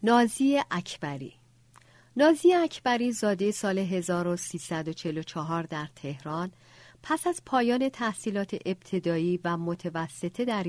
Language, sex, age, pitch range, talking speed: Persian, female, 50-69, 170-215 Hz, 95 wpm